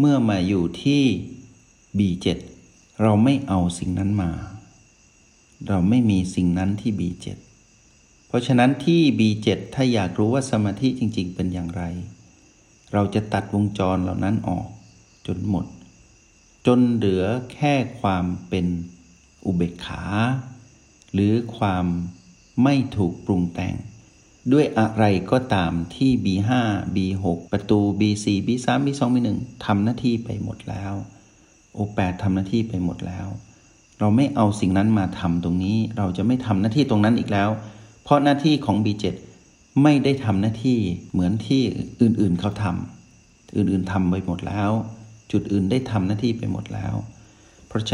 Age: 60-79